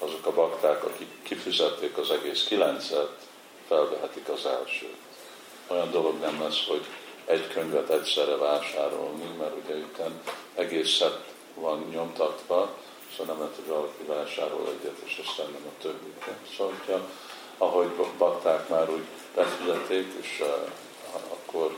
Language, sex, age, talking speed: Hungarian, male, 50-69, 130 wpm